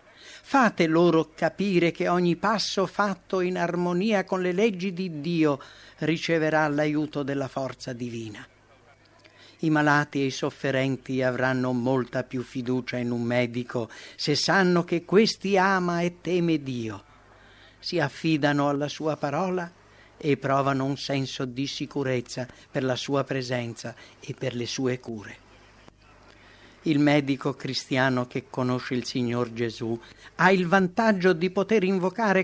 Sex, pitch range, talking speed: male, 130-175 Hz, 135 wpm